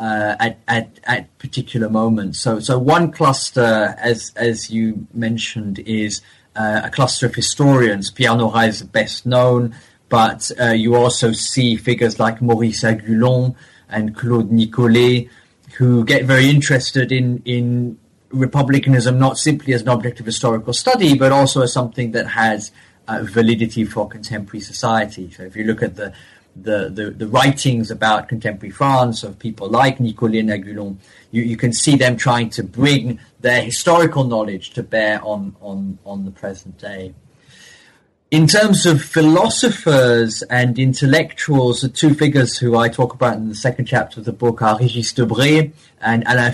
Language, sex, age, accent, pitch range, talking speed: English, male, 30-49, British, 110-130 Hz, 160 wpm